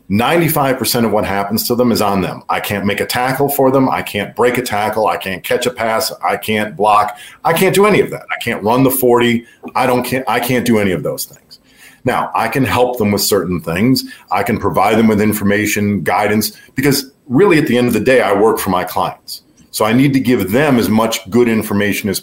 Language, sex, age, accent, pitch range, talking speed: English, male, 40-59, American, 100-125 Hz, 240 wpm